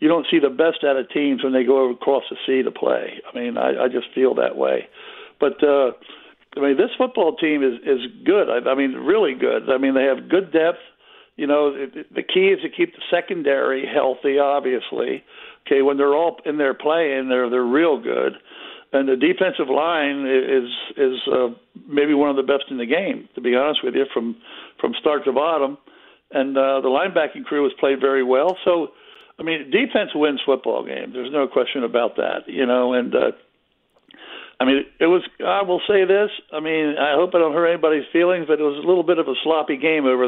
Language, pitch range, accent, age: English, 135-175 Hz, American, 60-79